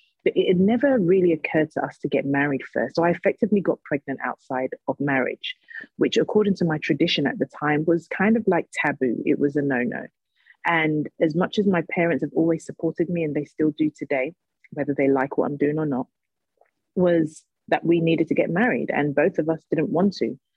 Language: English